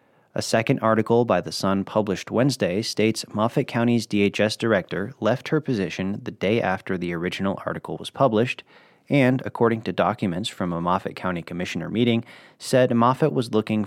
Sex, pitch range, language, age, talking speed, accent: male, 90-120 Hz, English, 30-49, 165 wpm, American